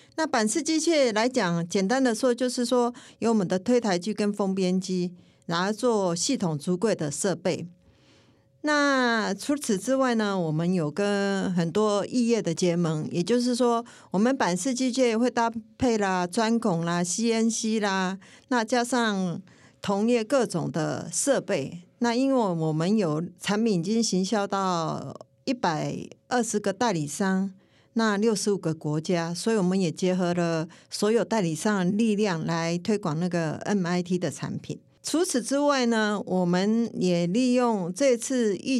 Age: 50-69